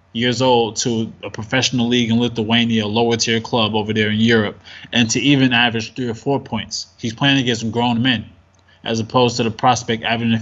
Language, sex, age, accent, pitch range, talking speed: English, male, 20-39, American, 110-130 Hz, 200 wpm